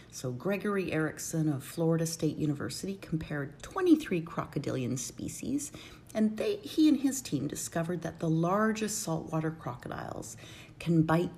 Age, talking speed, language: 40-59, 130 wpm, English